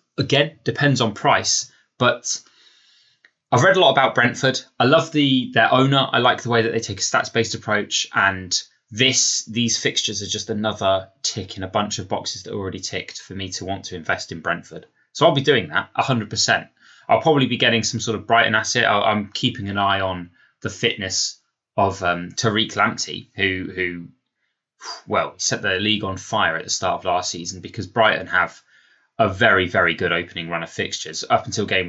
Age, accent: 20-39, British